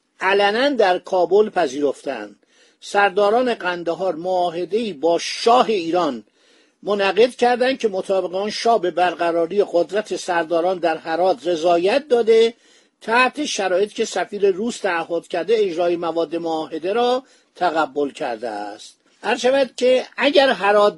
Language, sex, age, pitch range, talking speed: Persian, male, 50-69, 180-240 Hz, 120 wpm